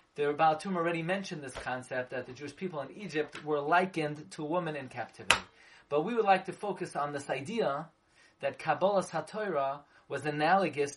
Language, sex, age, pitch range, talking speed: English, male, 30-49, 150-190 Hz, 180 wpm